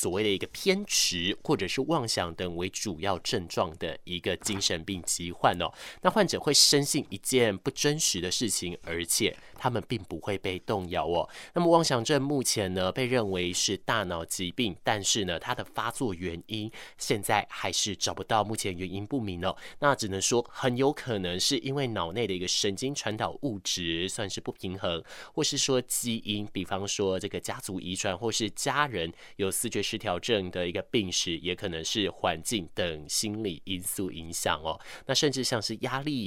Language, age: Chinese, 20-39